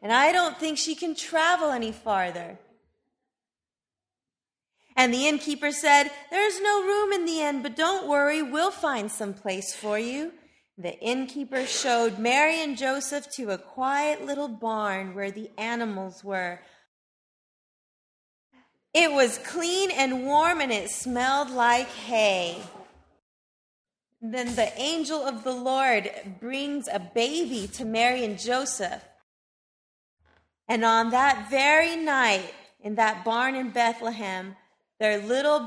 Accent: American